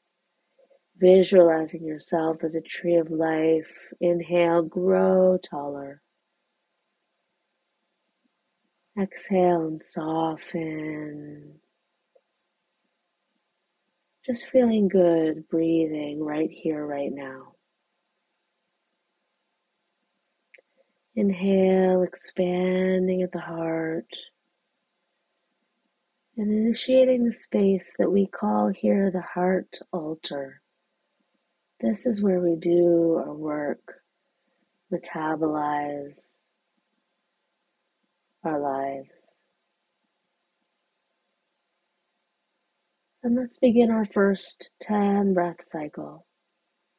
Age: 30-49